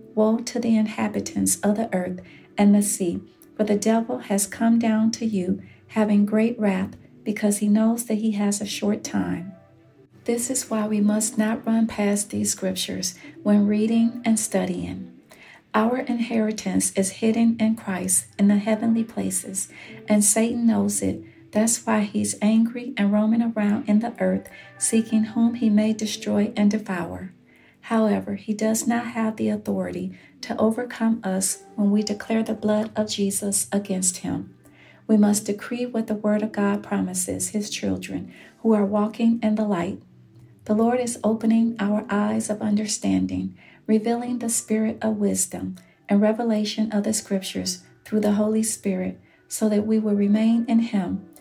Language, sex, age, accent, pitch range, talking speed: English, female, 50-69, American, 200-225 Hz, 165 wpm